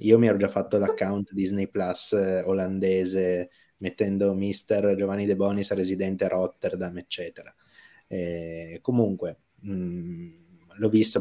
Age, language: 20-39, Italian